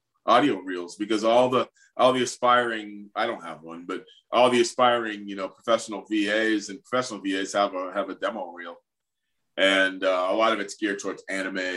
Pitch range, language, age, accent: 95-115 Hz, English, 30-49, American